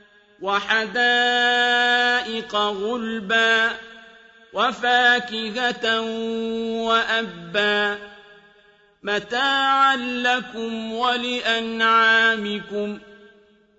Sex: male